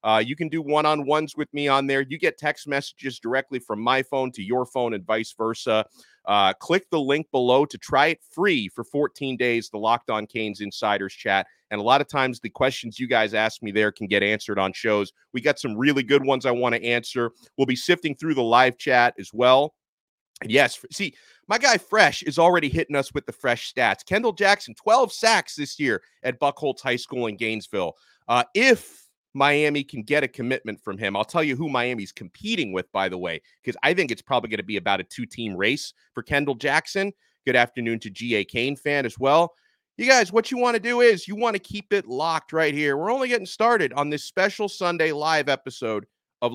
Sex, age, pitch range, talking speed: male, 30-49, 110-155 Hz, 225 wpm